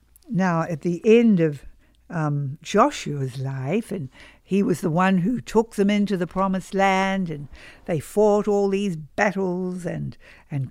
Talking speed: 155 wpm